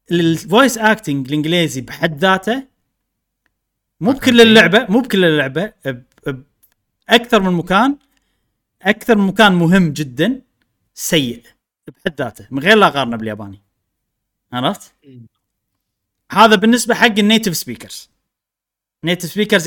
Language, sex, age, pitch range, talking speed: Arabic, male, 30-49, 135-220 Hz, 105 wpm